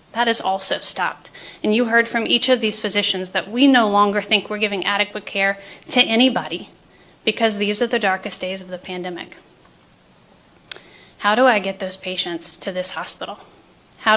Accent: American